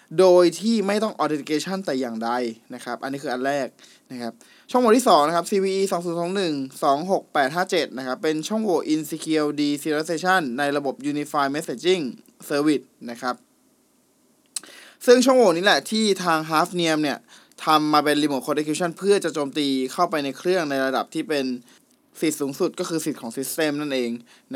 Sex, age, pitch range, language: male, 20-39, 140-190 Hz, Thai